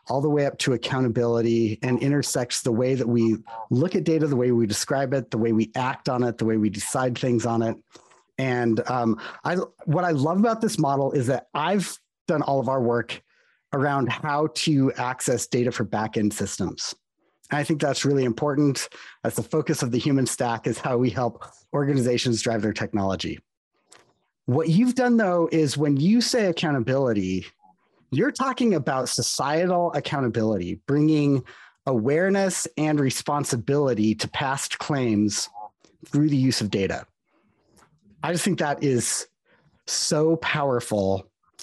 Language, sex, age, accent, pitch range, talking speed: English, male, 30-49, American, 120-155 Hz, 160 wpm